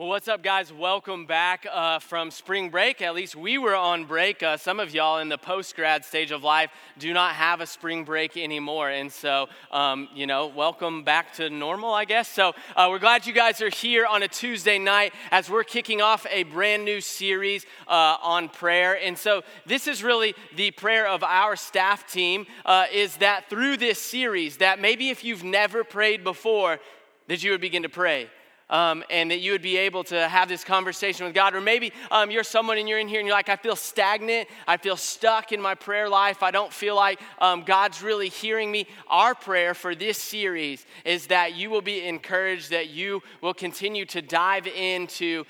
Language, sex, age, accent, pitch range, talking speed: English, male, 20-39, American, 170-215 Hz, 210 wpm